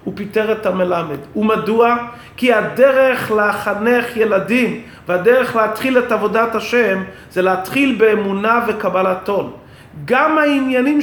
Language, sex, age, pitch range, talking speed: English, male, 30-49, 200-255 Hz, 110 wpm